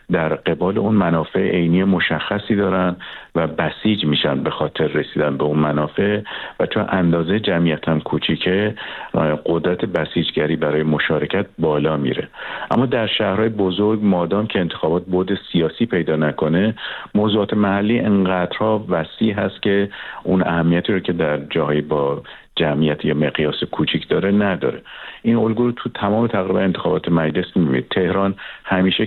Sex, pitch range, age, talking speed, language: male, 80-105 Hz, 50-69, 140 wpm, Persian